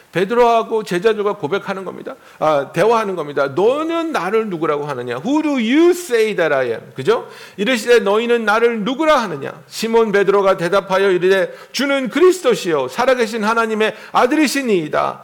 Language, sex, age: Korean, male, 50-69